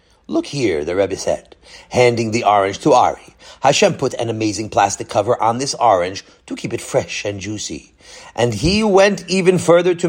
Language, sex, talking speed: English, male, 185 wpm